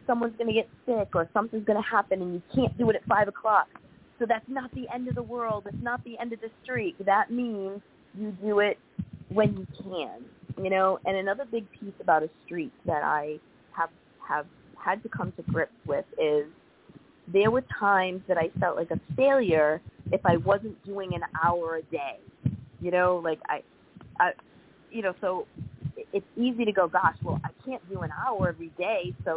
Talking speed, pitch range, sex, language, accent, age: 205 wpm, 180-235 Hz, female, English, American, 20-39